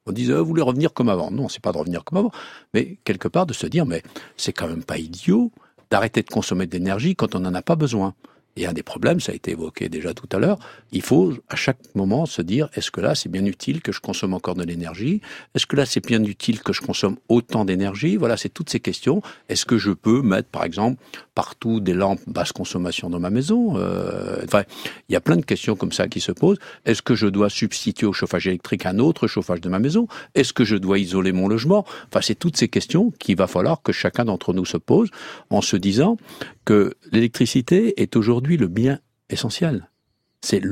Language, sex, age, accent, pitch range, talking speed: French, male, 50-69, French, 95-140 Hz, 235 wpm